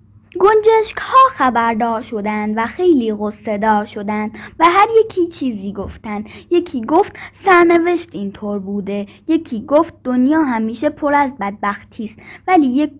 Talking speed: 135 wpm